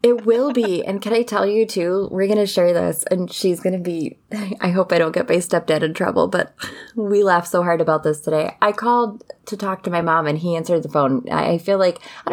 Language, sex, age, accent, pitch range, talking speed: English, female, 20-39, American, 165-220 Hz, 260 wpm